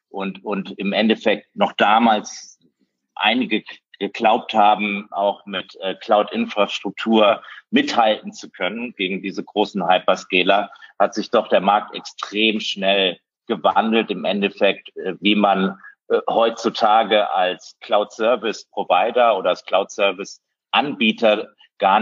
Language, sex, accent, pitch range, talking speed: German, male, German, 95-110 Hz, 105 wpm